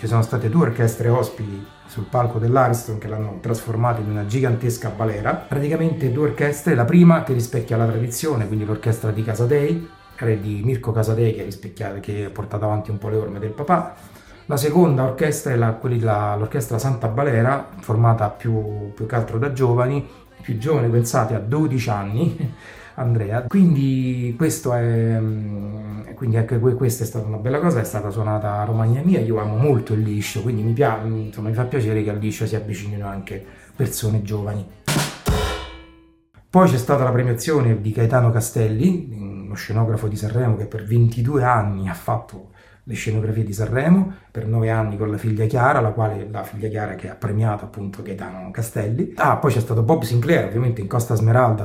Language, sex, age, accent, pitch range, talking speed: Italian, male, 30-49, native, 105-125 Hz, 175 wpm